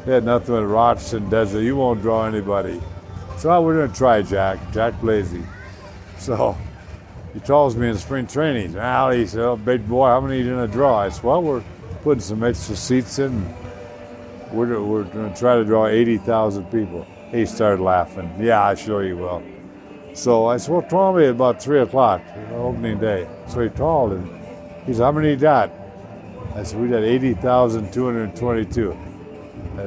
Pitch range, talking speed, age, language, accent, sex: 100-120 Hz, 190 wpm, 50-69, English, American, male